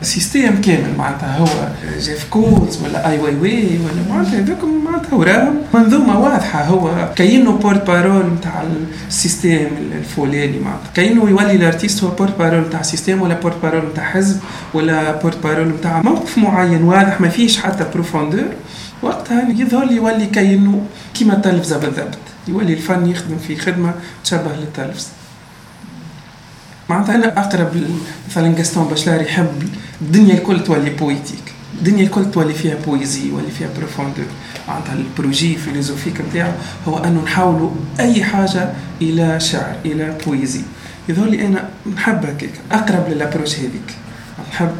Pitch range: 155-195 Hz